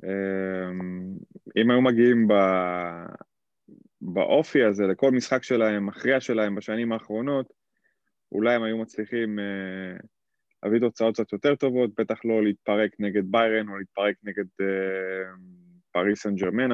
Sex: male